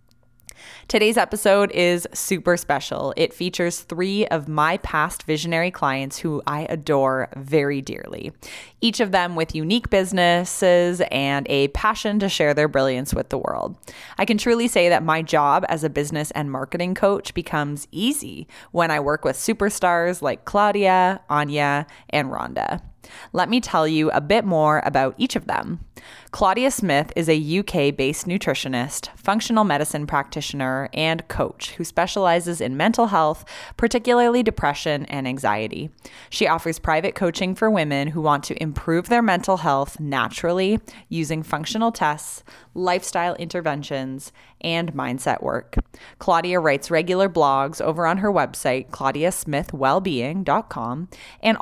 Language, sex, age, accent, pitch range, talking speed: English, female, 20-39, American, 140-185 Hz, 145 wpm